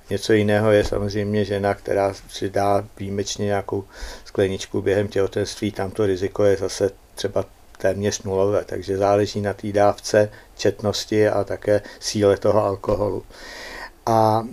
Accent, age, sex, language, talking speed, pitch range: native, 60-79, male, Czech, 130 wpm, 100-110 Hz